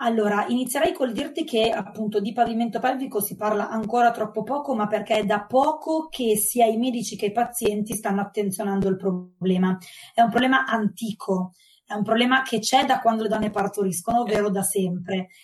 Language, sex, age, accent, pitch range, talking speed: Italian, female, 20-39, native, 210-260 Hz, 185 wpm